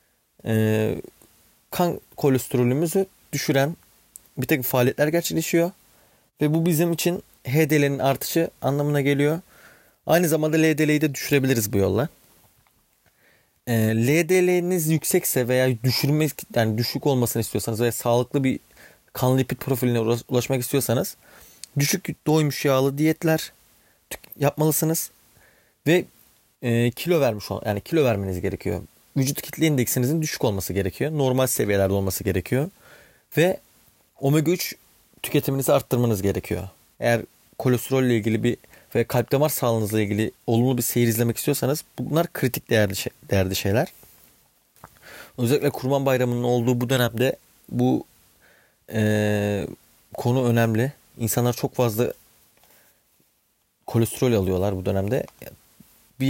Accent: native